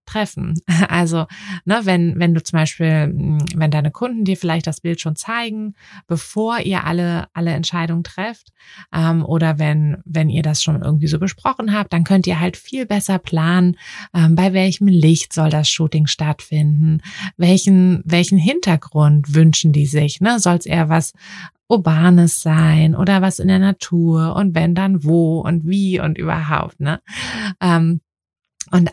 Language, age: German, 20-39